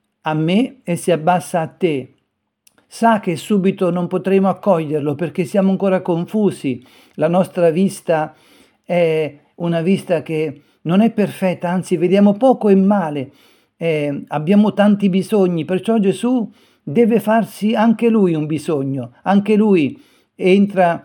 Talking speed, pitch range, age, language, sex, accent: 135 wpm, 160-200 Hz, 50-69, Italian, male, native